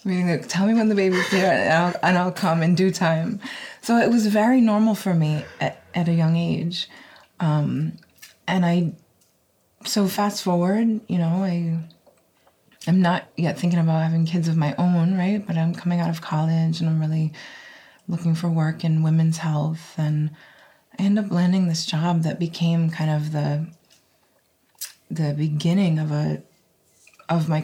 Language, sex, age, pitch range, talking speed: English, female, 20-39, 155-185 Hz, 180 wpm